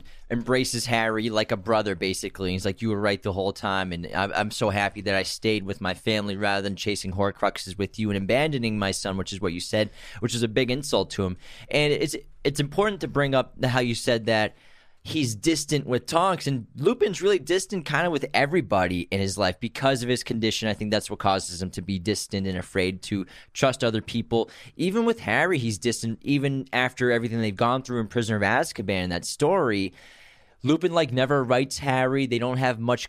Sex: male